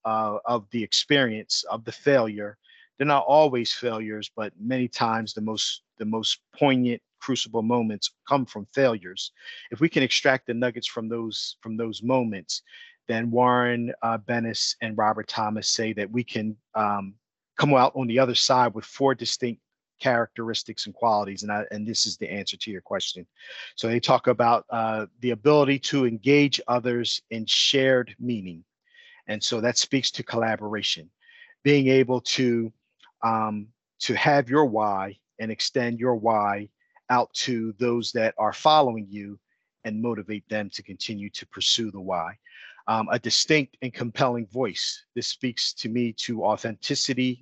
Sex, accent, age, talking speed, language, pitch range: male, American, 50-69, 160 wpm, English, 110-125 Hz